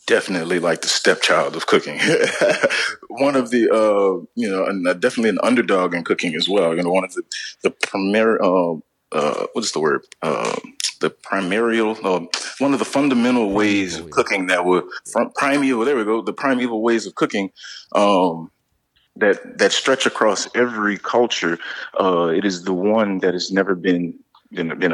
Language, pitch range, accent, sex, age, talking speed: English, 95-125 Hz, American, male, 30-49, 180 wpm